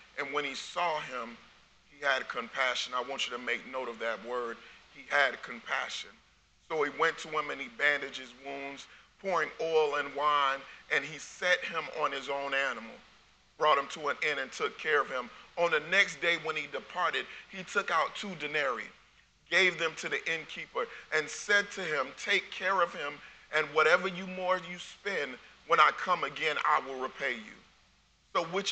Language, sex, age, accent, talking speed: English, male, 40-59, American, 195 wpm